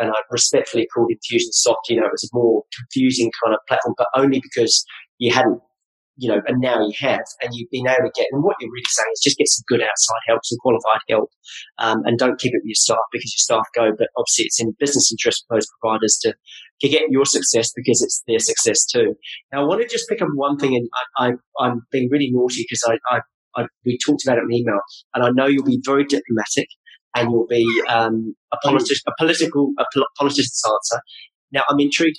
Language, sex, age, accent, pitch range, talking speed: English, male, 30-49, British, 120-160 Hz, 235 wpm